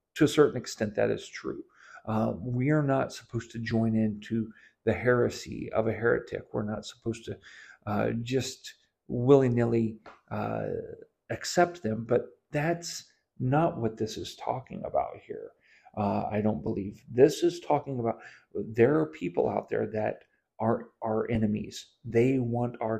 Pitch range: 115-140 Hz